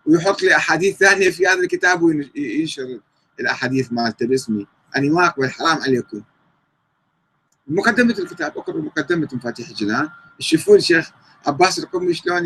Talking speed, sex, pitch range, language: 130 wpm, male, 130-195 Hz, Arabic